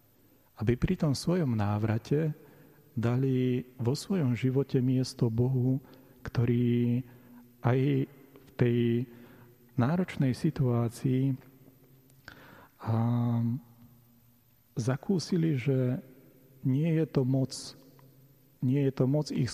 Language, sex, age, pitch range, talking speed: Slovak, male, 40-59, 120-135 Hz, 85 wpm